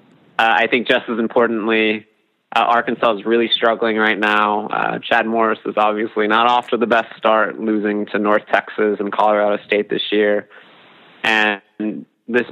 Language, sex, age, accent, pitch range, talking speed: English, male, 20-39, American, 105-115 Hz, 170 wpm